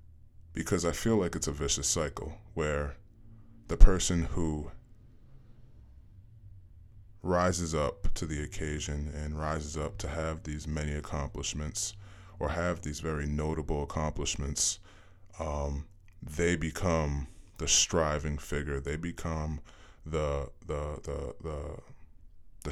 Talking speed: 115 wpm